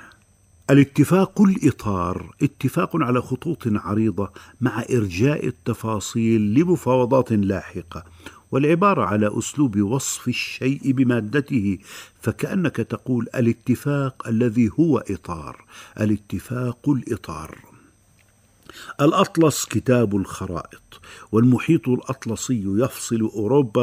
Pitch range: 100-135 Hz